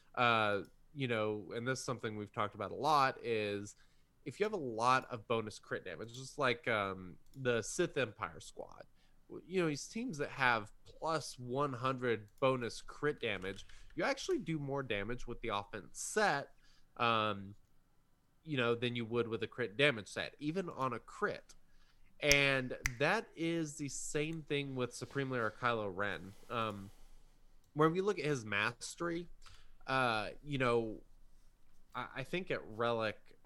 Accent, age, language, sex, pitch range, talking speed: American, 20-39, English, male, 110-140 Hz, 165 wpm